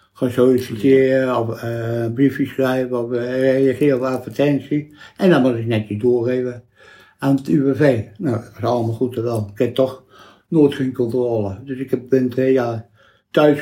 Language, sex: Dutch, male